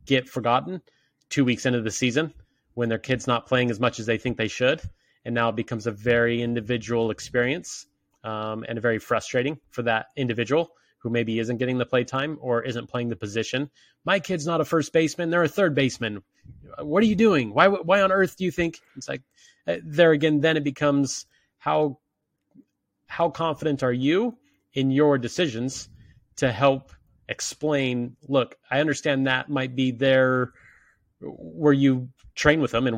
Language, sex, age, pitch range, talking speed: English, male, 30-49, 115-145 Hz, 180 wpm